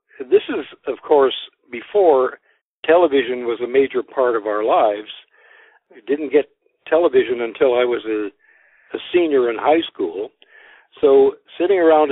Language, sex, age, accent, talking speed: English, male, 60-79, American, 145 wpm